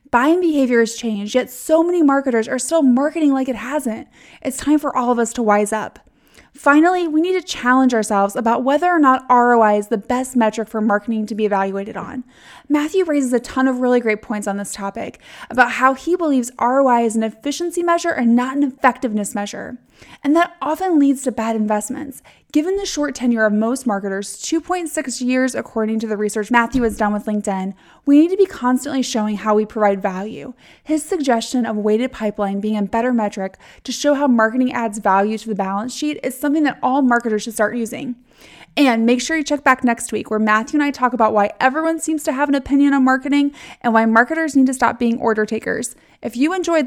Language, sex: English, female